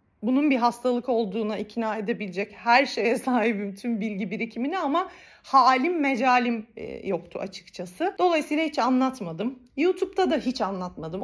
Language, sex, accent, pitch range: Turkish, female, native, 200-280 Hz